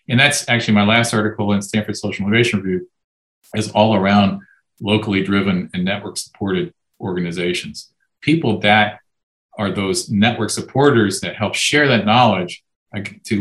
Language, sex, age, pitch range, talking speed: English, male, 40-59, 100-120 Hz, 140 wpm